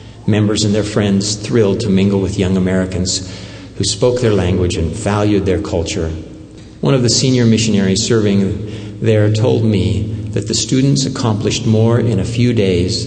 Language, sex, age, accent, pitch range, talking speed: English, male, 50-69, American, 95-115 Hz, 165 wpm